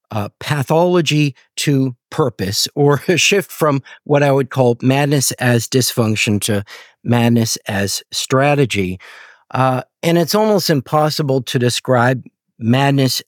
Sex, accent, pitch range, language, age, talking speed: male, American, 115-140 Hz, English, 50-69, 120 wpm